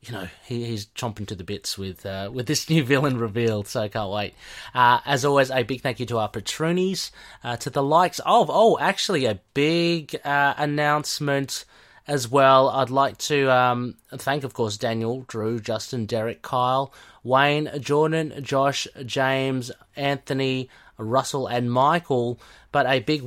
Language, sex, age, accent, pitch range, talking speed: English, male, 30-49, Australian, 110-140 Hz, 170 wpm